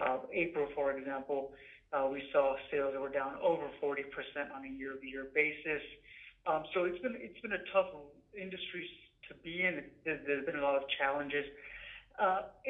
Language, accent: English, American